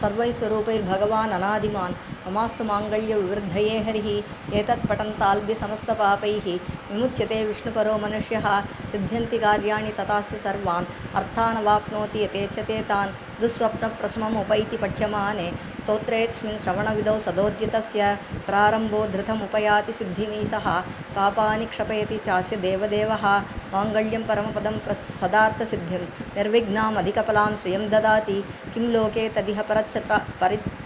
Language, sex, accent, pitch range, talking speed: Tamil, male, native, 205-220 Hz, 80 wpm